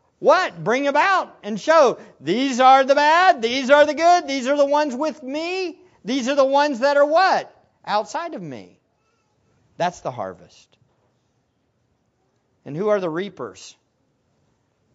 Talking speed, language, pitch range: 150 wpm, English, 115-185 Hz